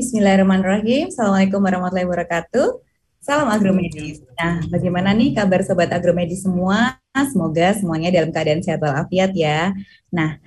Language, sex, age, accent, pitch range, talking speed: Indonesian, female, 20-39, native, 170-210 Hz, 120 wpm